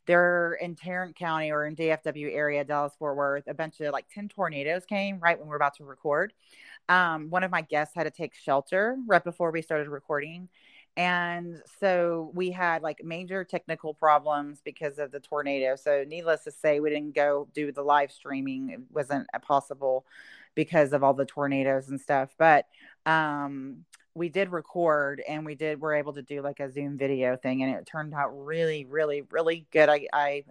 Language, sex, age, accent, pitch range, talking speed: English, female, 30-49, American, 140-160 Hz, 195 wpm